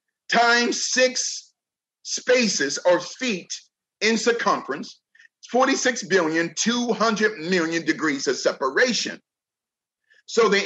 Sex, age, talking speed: male, 40-59, 75 wpm